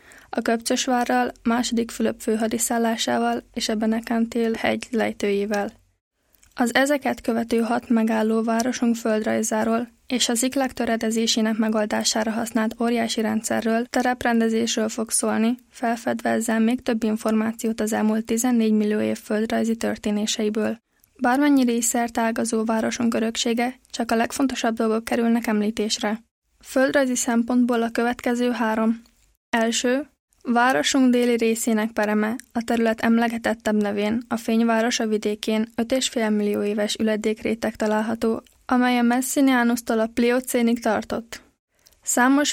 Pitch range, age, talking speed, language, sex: 220-240 Hz, 20-39, 115 wpm, Czech, female